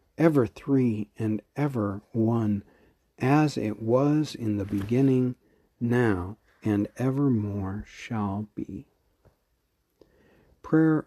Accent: American